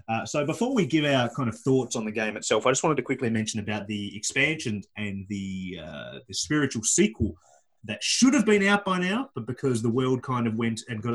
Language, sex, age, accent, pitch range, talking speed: English, male, 20-39, Australian, 110-135 Hz, 230 wpm